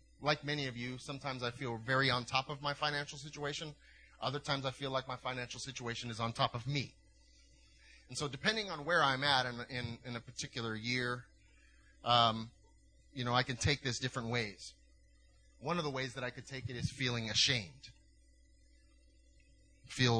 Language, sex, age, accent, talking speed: English, male, 30-49, American, 185 wpm